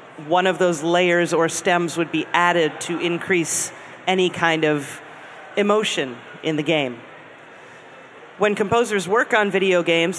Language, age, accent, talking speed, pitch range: English, 30-49, American, 140 wpm, 160-195 Hz